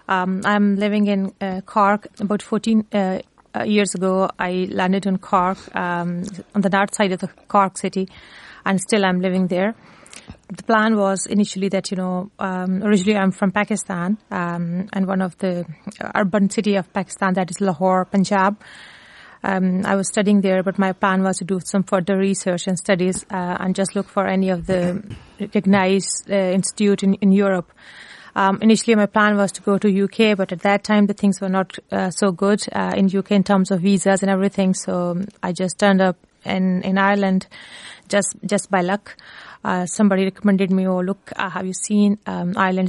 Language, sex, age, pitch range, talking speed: English, female, 30-49, 185-200 Hz, 190 wpm